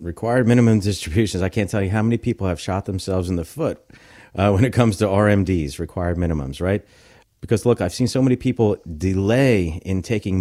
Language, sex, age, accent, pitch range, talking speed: English, male, 40-59, American, 95-115 Hz, 200 wpm